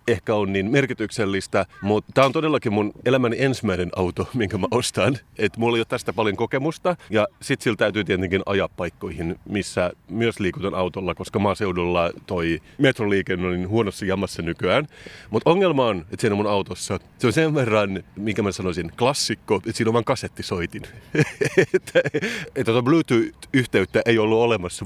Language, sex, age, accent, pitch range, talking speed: Finnish, male, 30-49, native, 95-125 Hz, 165 wpm